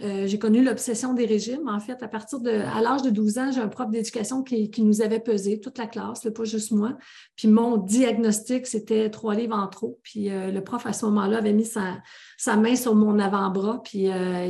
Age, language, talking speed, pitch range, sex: 40-59, French, 230 wpm, 210-245 Hz, female